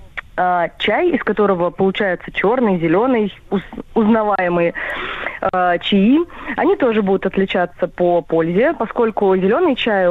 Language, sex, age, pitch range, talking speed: Russian, female, 20-39, 180-230 Hz, 105 wpm